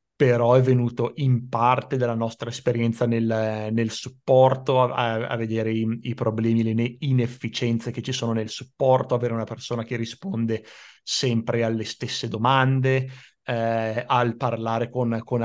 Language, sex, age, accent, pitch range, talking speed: Italian, male, 30-49, native, 110-125 Hz, 150 wpm